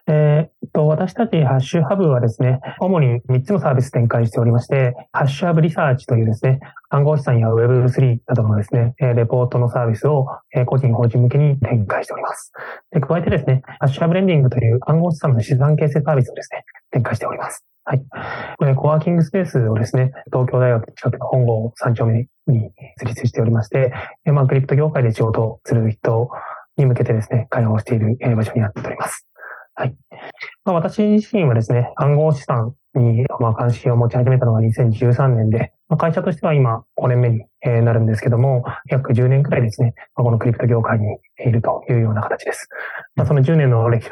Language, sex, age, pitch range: Japanese, male, 20-39, 115-140 Hz